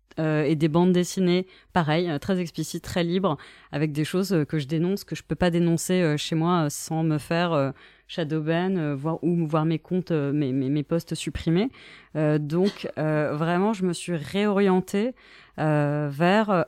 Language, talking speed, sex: French, 190 wpm, female